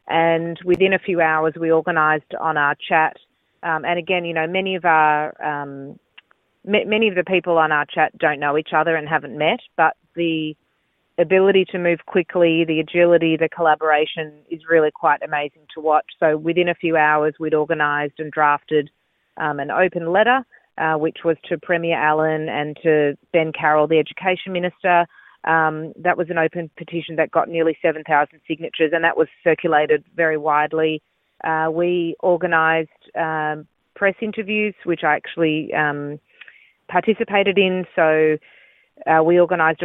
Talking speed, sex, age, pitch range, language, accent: 165 wpm, female, 30-49, 155-175 Hz, Hebrew, Australian